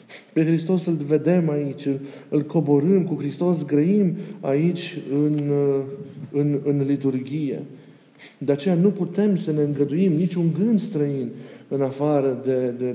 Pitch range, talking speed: 130-165 Hz, 140 wpm